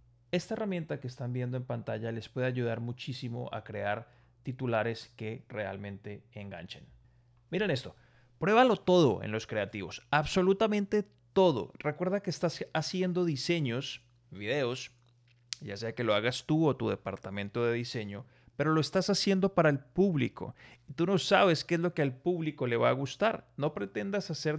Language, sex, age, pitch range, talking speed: Spanish, male, 30-49, 120-175 Hz, 160 wpm